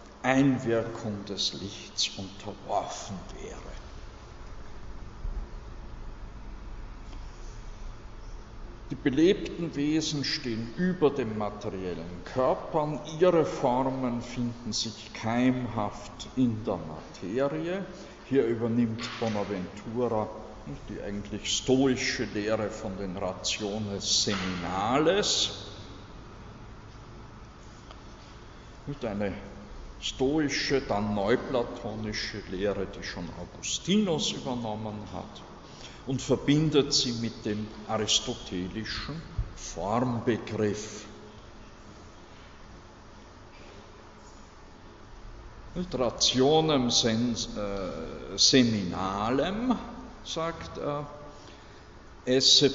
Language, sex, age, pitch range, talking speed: German, male, 60-79, 100-130 Hz, 65 wpm